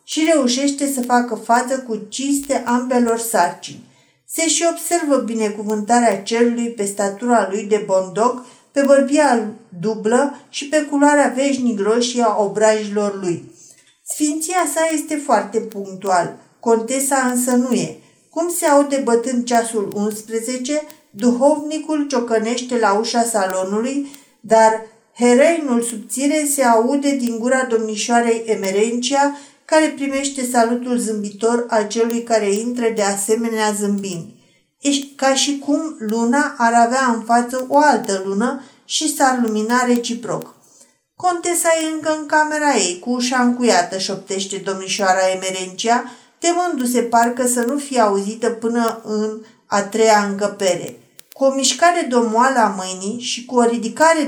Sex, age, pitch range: female, 50-69, 215-275 Hz